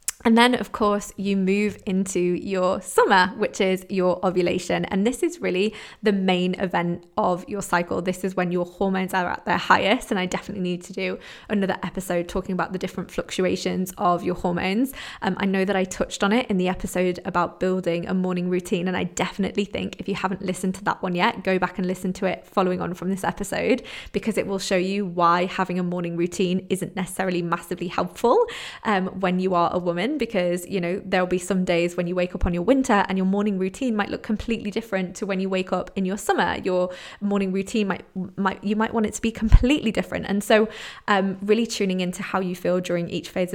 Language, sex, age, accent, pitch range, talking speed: English, female, 20-39, British, 180-205 Hz, 225 wpm